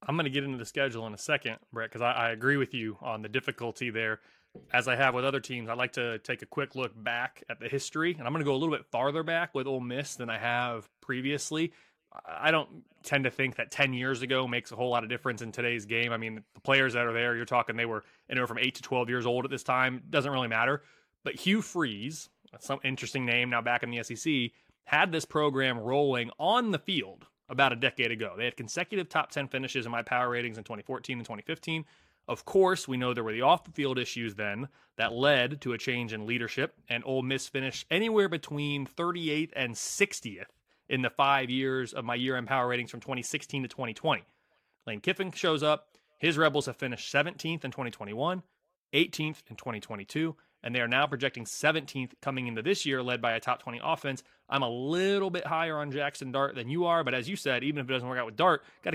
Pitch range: 120-150 Hz